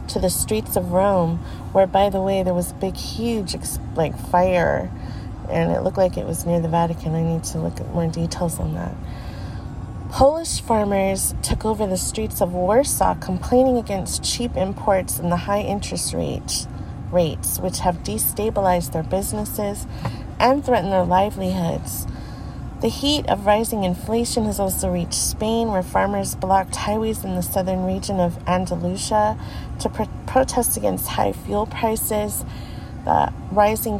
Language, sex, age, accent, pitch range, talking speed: English, female, 30-49, American, 165-210 Hz, 155 wpm